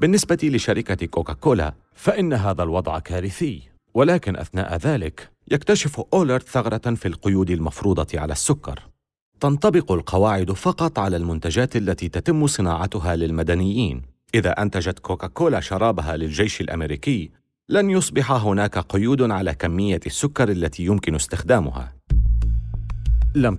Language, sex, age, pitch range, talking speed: Arabic, male, 40-59, 85-125 Hz, 110 wpm